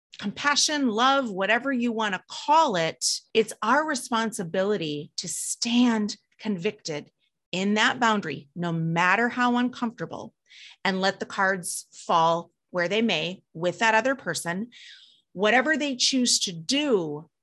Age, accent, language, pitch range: 30-49, American, English, 175-235 Hz